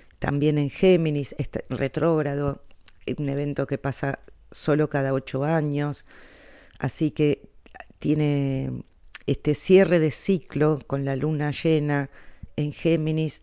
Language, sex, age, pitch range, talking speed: Spanish, female, 40-59, 135-155 Hz, 115 wpm